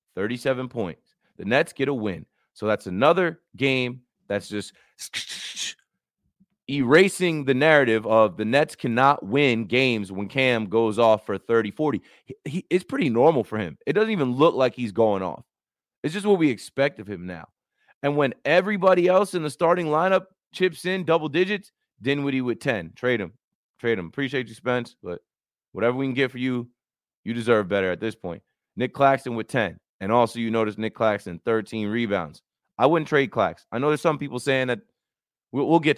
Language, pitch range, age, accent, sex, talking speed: English, 110-145 Hz, 30-49, American, male, 185 wpm